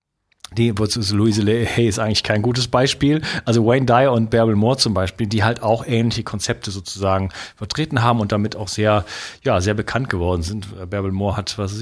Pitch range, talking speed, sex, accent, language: 100-115 Hz, 200 wpm, male, German, German